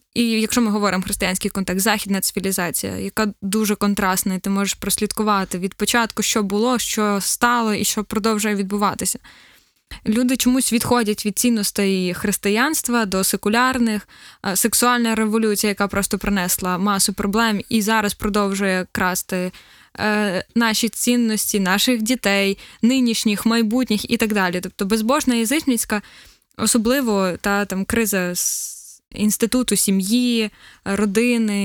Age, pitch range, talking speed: 10-29, 200-235 Hz, 120 wpm